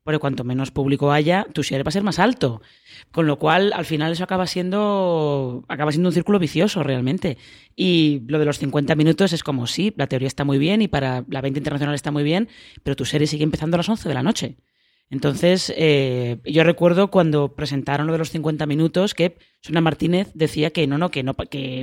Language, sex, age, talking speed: Spanish, female, 20-39, 225 wpm